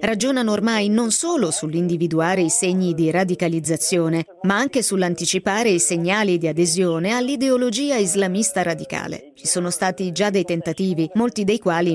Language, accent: Italian, native